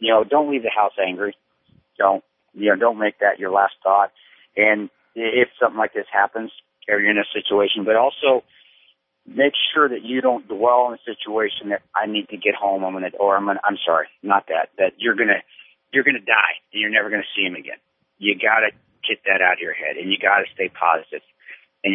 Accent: American